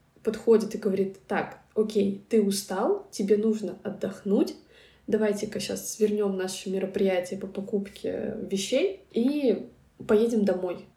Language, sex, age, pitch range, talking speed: Russian, female, 20-39, 200-230 Hz, 115 wpm